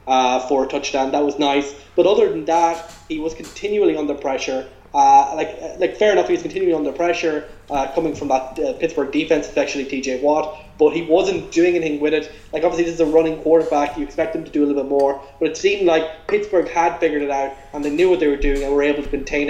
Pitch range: 140-170 Hz